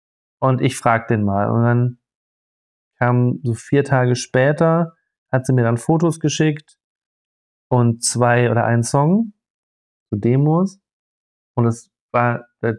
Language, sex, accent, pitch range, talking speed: German, male, German, 120-145 Hz, 140 wpm